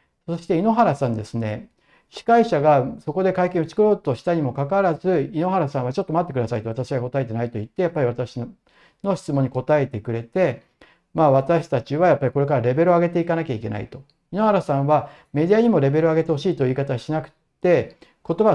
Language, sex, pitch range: Japanese, male, 130-175 Hz